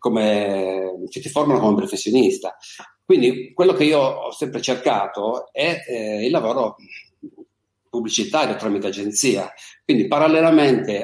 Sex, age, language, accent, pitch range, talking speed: male, 50-69, Italian, native, 105-165 Hz, 115 wpm